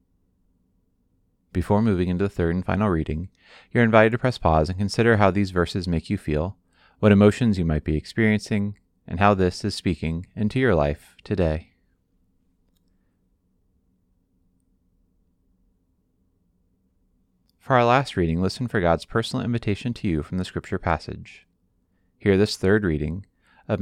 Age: 30-49